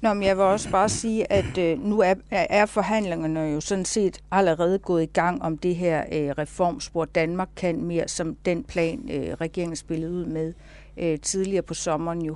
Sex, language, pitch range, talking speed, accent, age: female, Danish, 165-210 Hz, 195 wpm, native, 60-79